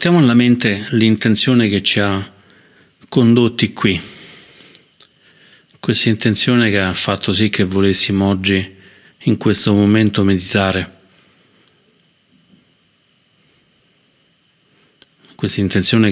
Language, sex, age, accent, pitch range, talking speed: Italian, male, 40-59, native, 95-110 Hz, 90 wpm